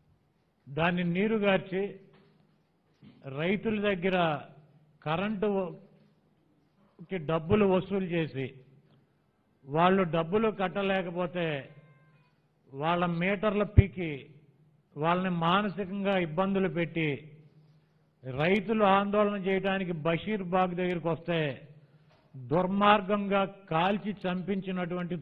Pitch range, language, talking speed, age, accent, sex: 155-195 Hz, Telugu, 70 wpm, 50-69, native, male